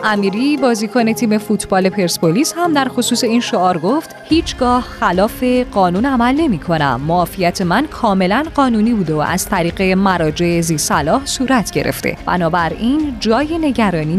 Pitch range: 170-250 Hz